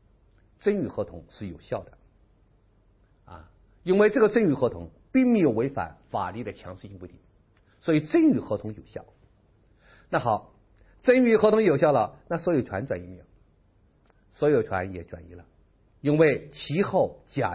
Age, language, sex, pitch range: 50-69, Chinese, male, 100-135 Hz